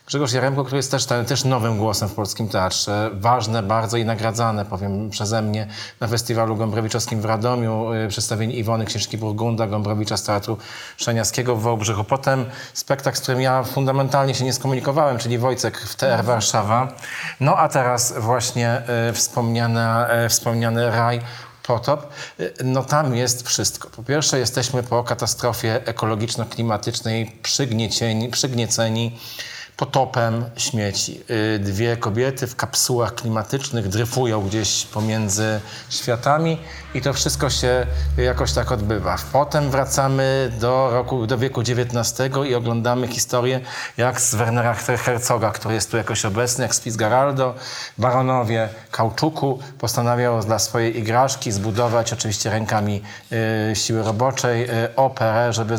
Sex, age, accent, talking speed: male, 40-59, native, 130 wpm